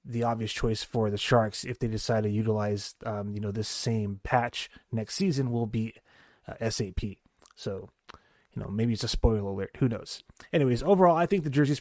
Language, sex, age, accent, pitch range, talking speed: English, male, 30-49, American, 115-140 Hz, 200 wpm